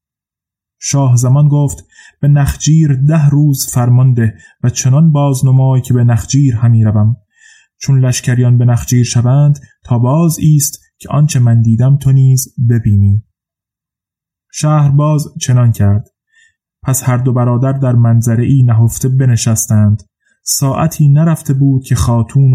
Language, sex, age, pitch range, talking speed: Persian, male, 20-39, 115-135 Hz, 135 wpm